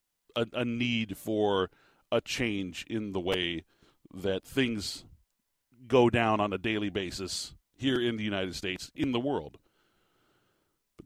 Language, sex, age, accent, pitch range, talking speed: English, male, 40-59, American, 100-125 Hz, 140 wpm